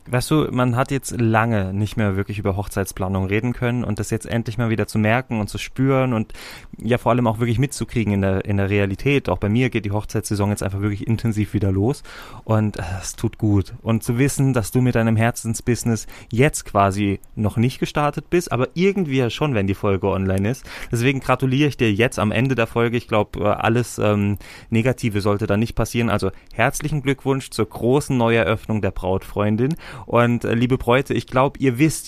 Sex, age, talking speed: male, 30-49, 200 wpm